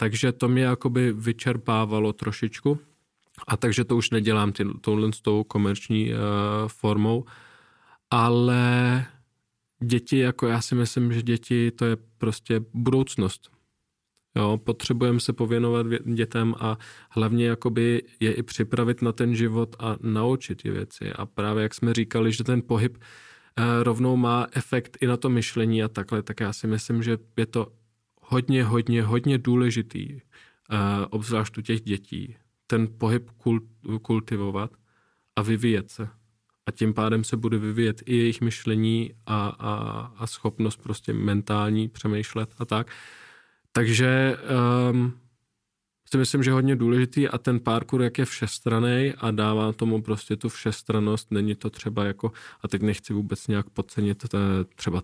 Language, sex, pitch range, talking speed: Czech, male, 105-120 Hz, 150 wpm